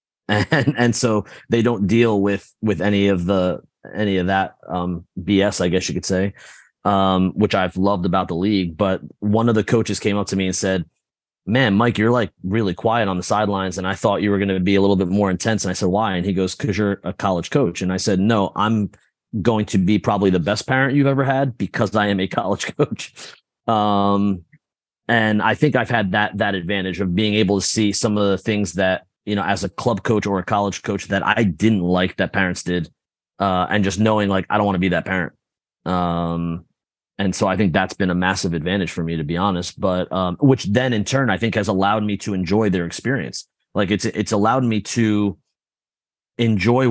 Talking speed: 230 wpm